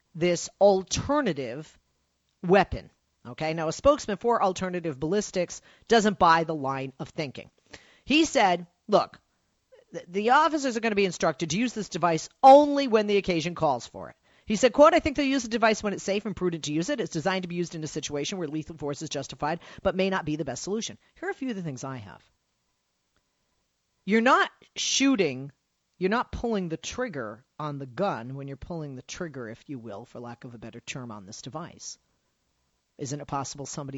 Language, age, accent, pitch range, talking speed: English, 40-59, American, 135-205 Hz, 205 wpm